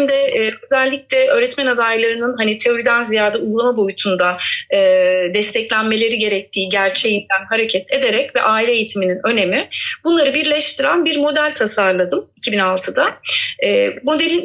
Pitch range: 210-295 Hz